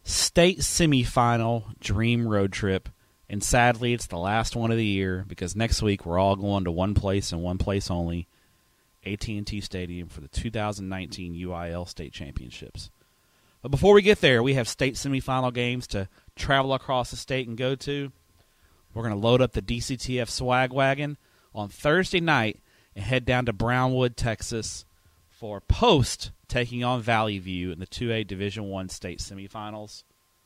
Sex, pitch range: male, 95-125 Hz